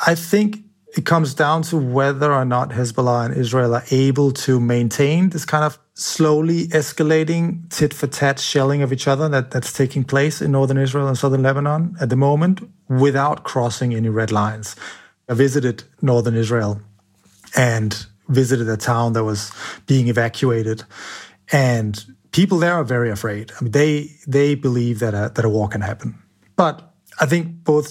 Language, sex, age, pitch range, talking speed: English, male, 30-49, 115-145 Hz, 170 wpm